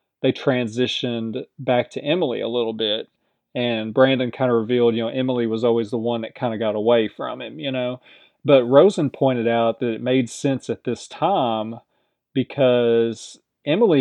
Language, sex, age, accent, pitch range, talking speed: English, male, 30-49, American, 115-130 Hz, 180 wpm